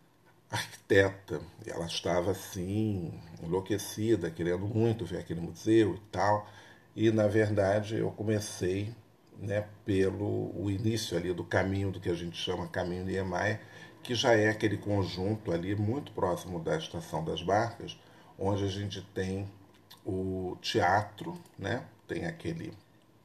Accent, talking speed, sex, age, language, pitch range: Brazilian, 140 wpm, male, 40-59, Portuguese, 95-110 Hz